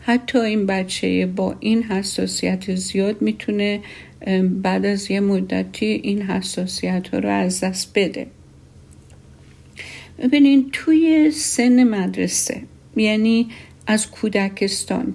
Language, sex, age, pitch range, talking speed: Persian, female, 50-69, 185-225 Hz, 105 wpm